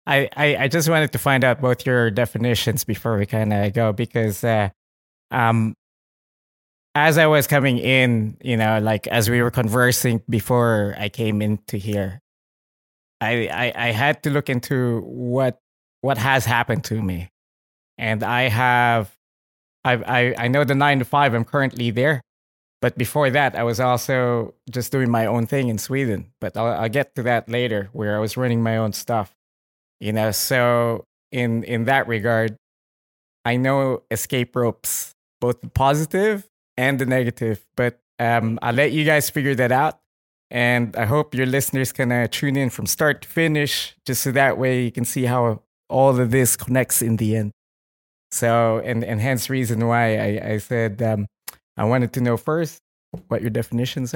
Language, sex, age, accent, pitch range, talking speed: English, male, 20-39, Filipino, 110-130 Hz, 180 wpm